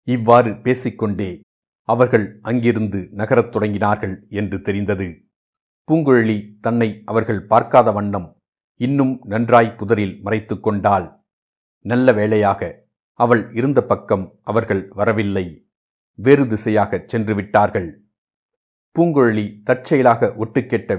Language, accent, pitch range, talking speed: Tamil, native, 100-120 Hz, 85 wpm